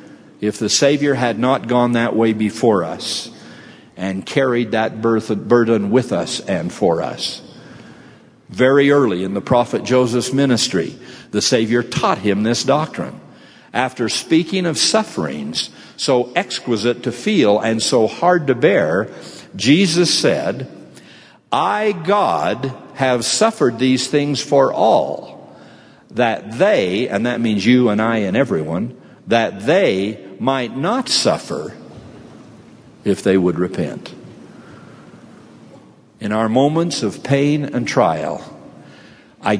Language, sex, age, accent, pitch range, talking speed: English, male, 60-79, American, 105-140 Hz, 125 wpm